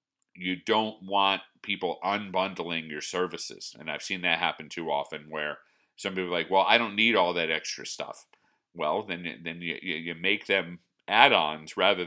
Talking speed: 180 wpm